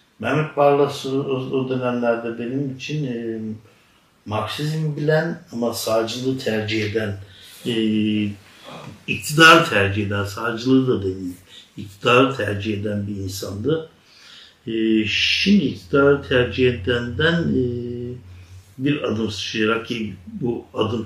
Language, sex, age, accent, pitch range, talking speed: Turkish, male, 60-79, native, 105-130 Hz, 105 wpm